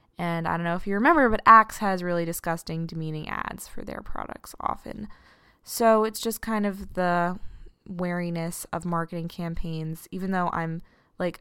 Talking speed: 170 wpm